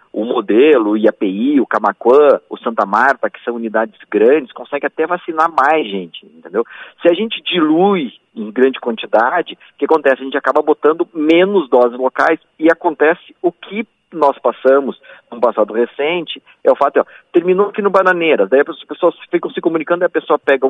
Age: 40-59